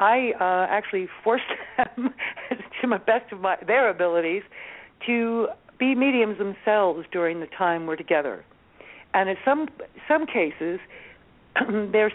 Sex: female